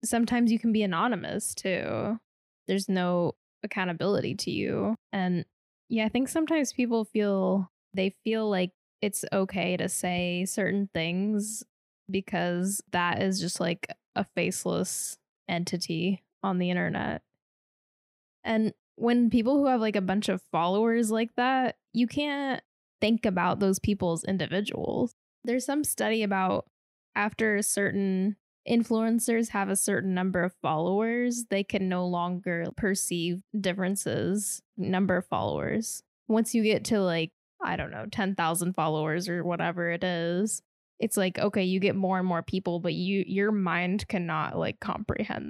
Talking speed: 145 wpm